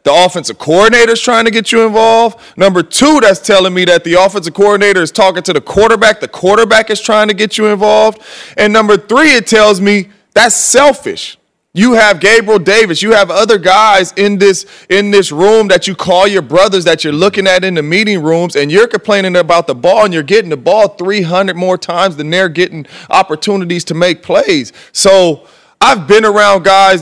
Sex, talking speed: male, 200 wpm